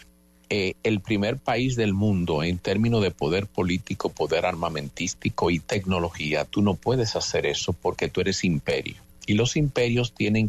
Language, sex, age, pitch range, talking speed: English, male, 50-69, 90-120 Hz, 160 wpm